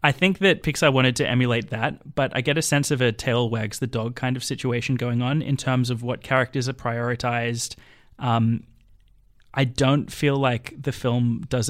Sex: male